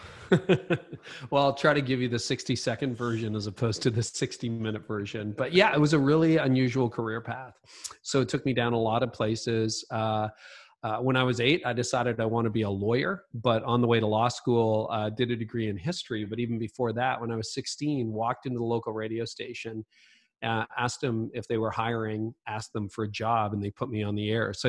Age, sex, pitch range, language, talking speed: 40-59, male, 110-130 Hz, English, 235 wpm